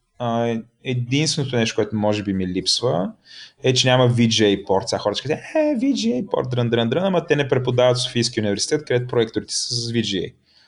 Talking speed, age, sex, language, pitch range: 170 wpm, 20-39, male, Bulgarian, 110-140 Hz